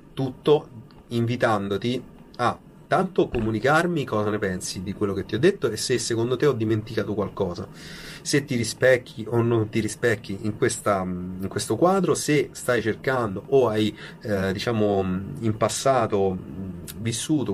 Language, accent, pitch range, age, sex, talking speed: Italian, native, 105-130 Hz, 30-49, male, 145 wpm